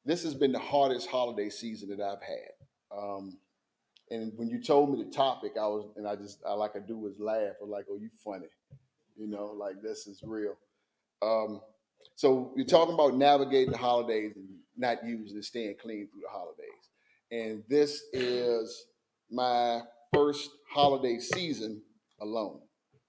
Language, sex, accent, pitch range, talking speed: English, male, American, 110-135 Hz, 165 wpm